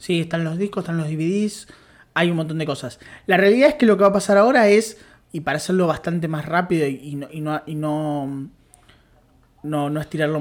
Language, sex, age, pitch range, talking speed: Spanish, male, 20-39, 145-185 Hz, 220 wpm